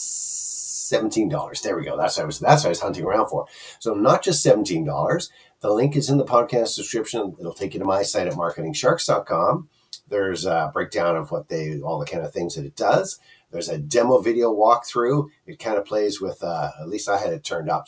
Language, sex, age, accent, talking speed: English, male, 50-69, American, 230 wpm